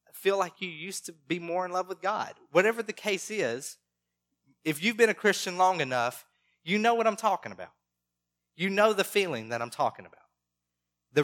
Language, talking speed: English, 200 wpm